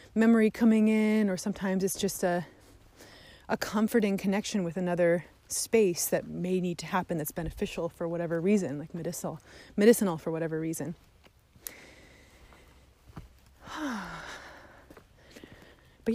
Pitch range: 165-200 Hz